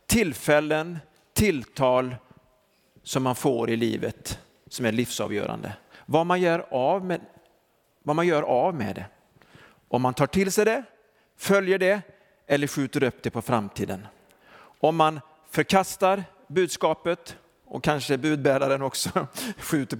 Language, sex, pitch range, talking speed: Swedish, male, 125-170 Hz, 130 wpm